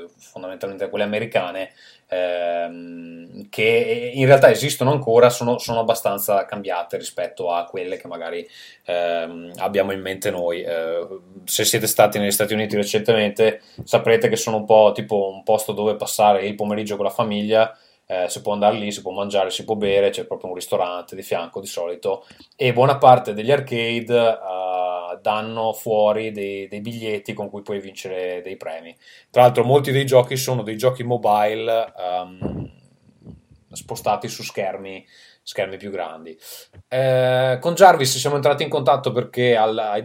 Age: 20-39